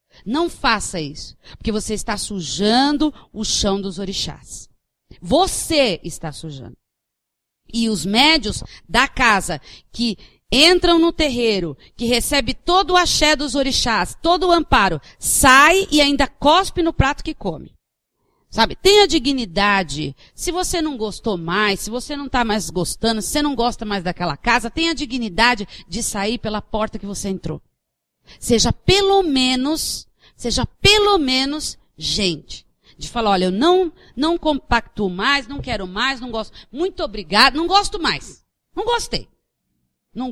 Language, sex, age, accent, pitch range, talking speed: Portuguese, female, 40-59, Brazilian, 205-310 Hz, 145 wpm